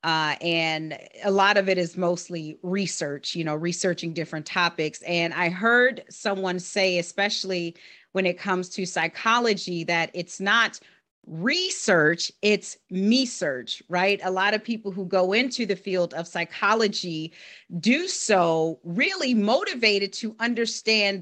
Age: 30-49